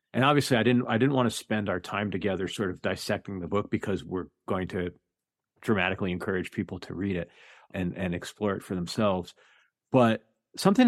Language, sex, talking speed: English, male, 195 wpm